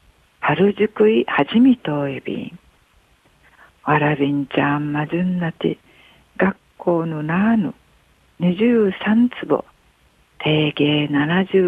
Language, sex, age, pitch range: Japanese, female, 60-79, 150-210 Hz